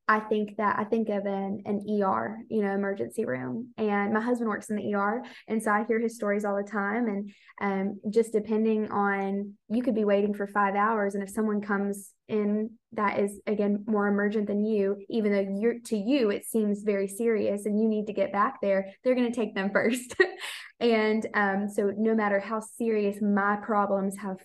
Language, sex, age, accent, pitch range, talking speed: English, female, 20-39, American, 200-220 Hz, 210 wpm